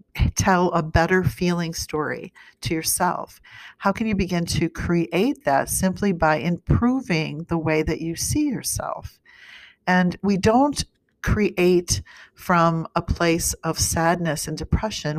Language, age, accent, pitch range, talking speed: English, 50-69, American, 165-195 Hz, 135 wpm